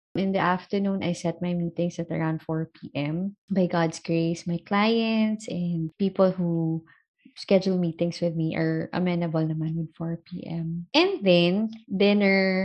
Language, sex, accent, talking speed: English, female, Filipino, 150 wpm